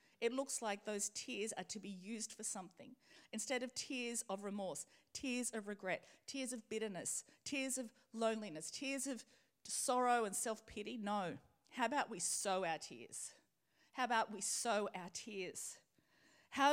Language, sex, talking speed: English, female, 160 wpm